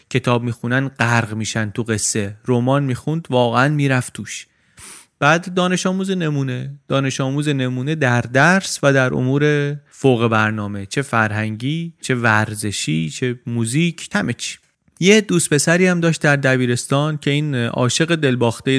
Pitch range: 120-155 Hz